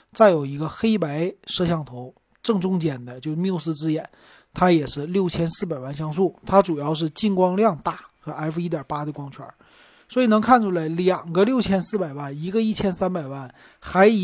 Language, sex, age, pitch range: Chinese, male, 30-49, 150-190 Hz